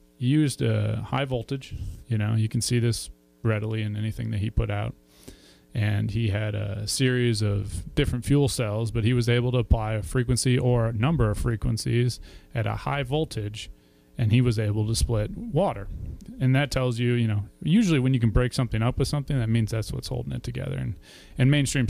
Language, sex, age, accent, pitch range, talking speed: English, male, 30-49, American, 105-125 Hz, 210 wpm